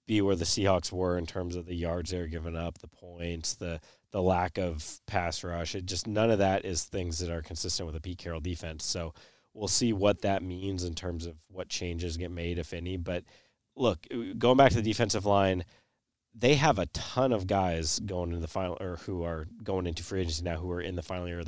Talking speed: 235 wpm